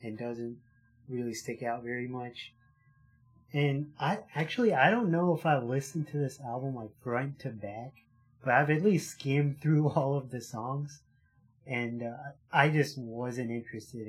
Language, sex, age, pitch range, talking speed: English, male, 30-49, 120-145 Hz, 165 wpm